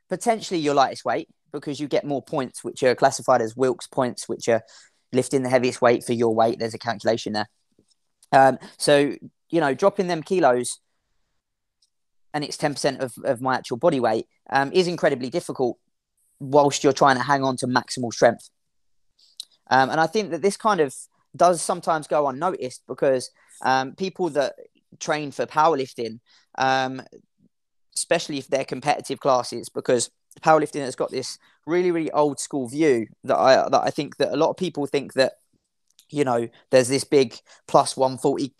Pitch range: 125-150 Hz